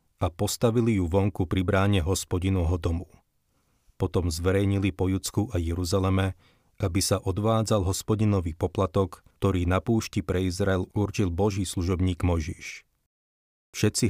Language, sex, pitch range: Slovak, male, 90-100 Hz